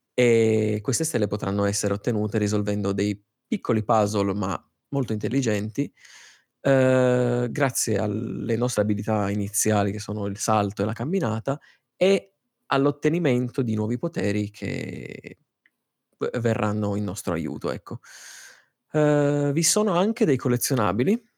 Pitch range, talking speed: 105-135 Hz, 115 wpm